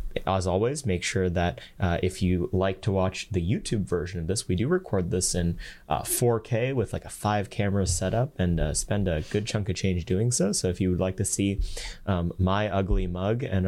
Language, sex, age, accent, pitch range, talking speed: English, male, 30-49, American, 85-100 Hz, 220 wpm